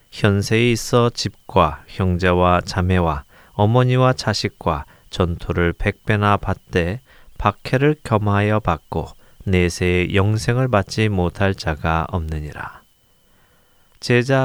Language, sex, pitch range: Korean, male, 90-120 Hz